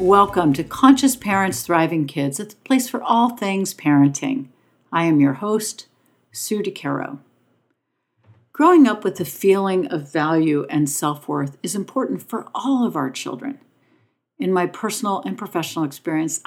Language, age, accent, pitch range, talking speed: English, 60-79, American, 145-200 Hz, 150 wpm